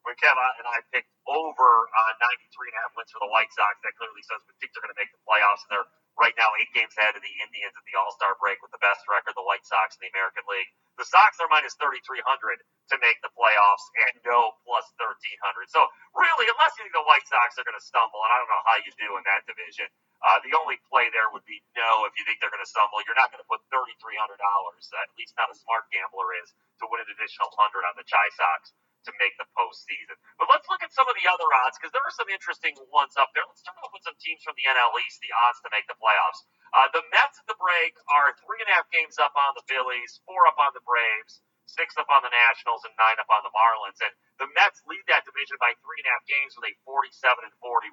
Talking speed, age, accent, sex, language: 265 wpm, 30-49, American, male, English